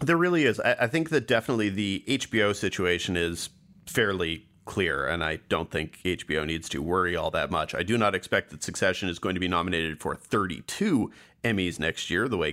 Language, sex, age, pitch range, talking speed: English, male, 30-49, 95-130 Hz, 205 wpm